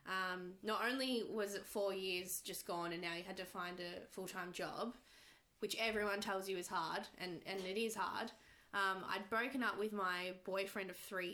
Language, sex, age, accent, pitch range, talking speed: English, female, 20-39, Australian, 180-205 Hz, 200 wpm